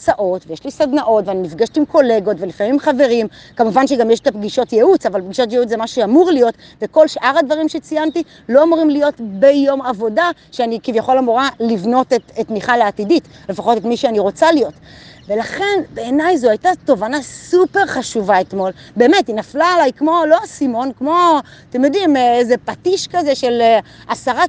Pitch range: 225-320 Hz